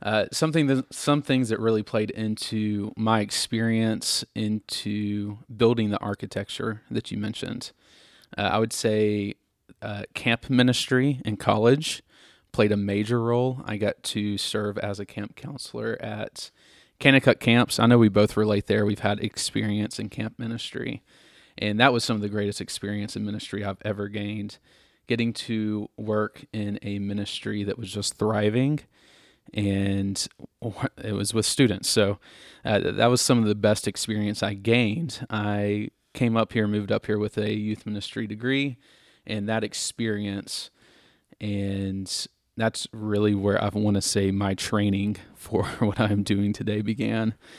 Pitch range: 105-115 Hz